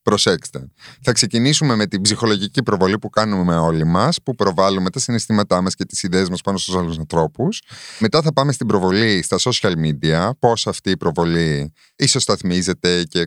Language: Greek